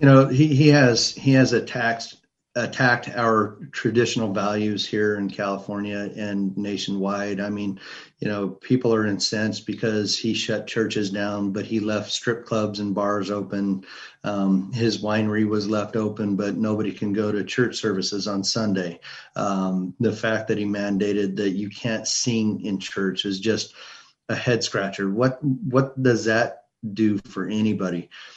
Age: 40-59